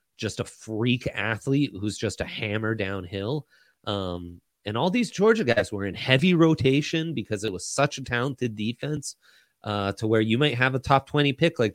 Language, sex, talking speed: English, male, 190 wpm